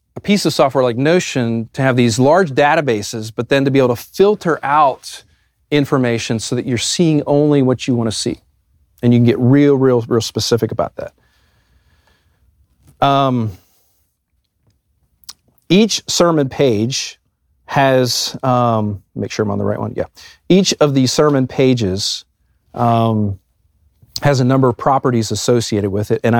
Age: 40-59